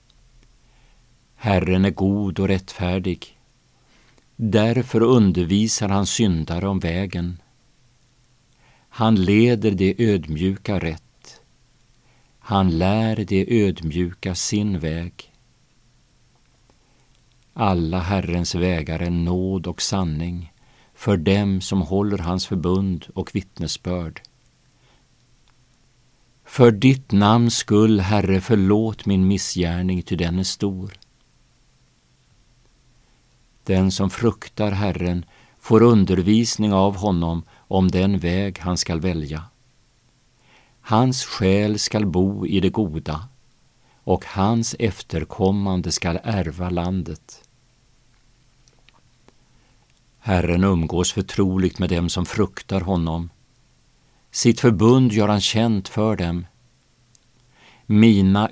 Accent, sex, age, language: Norwegian, male, 50-69, Swedish